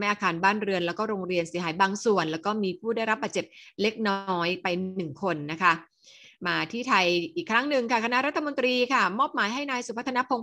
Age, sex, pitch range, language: 30-49, female, 180-225 Hz, Thai